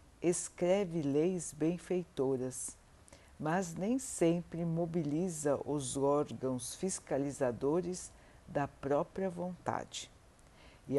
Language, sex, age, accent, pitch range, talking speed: Portuguese, female, 60-79, Brazilian, 125-170 Hz, 75 wpm